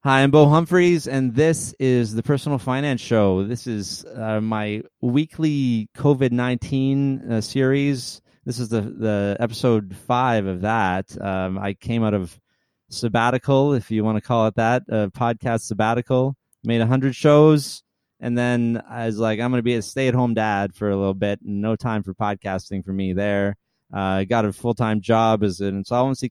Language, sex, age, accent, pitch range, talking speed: English, male, 30-49, American, 100-130 Hz, 180 wpm